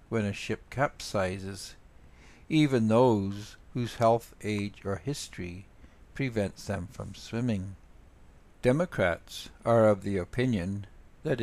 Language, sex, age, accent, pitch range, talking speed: English, male, 60-79, American, 95-120 Hz, 110 wpm